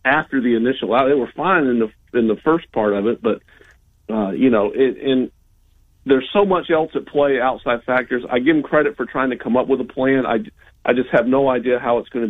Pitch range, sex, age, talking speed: 120-150 Hz, male, 40-59, 250 wpm